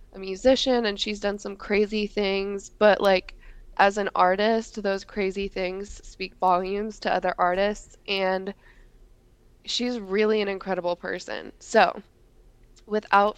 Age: 20-39